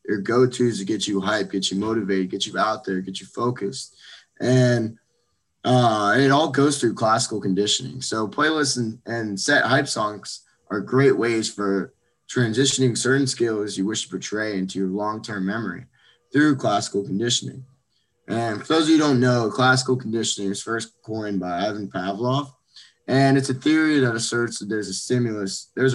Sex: male